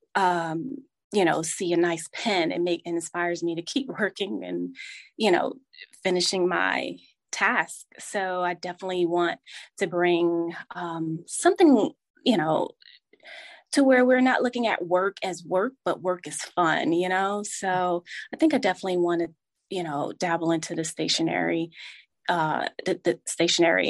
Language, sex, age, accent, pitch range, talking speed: English, female, 20-39, American, 170-235 Hz, 160 wpm